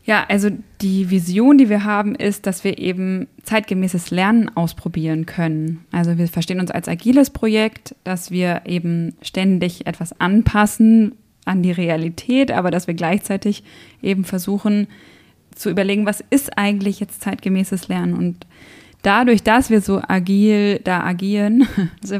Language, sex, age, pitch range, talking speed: German, female, 20-39, 180-210 Hz, 145 wpm